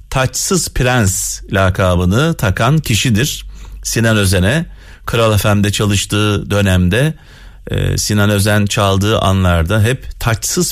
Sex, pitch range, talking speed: male, 100-130 Hz, 95 wpm